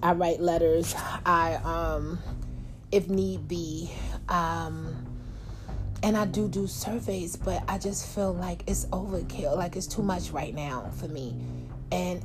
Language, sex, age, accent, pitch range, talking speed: English, female, 30-49, American, 145-215 Hz, 145 wpm